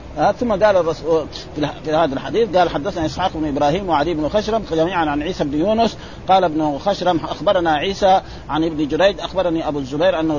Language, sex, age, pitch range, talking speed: Arabic, male, 50-69, 155-195 Hz, 190 wpm